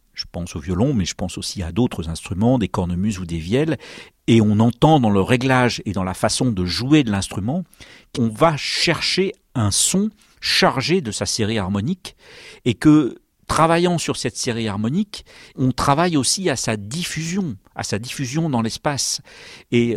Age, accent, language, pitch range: 50-69, French, French, 105-135 Hz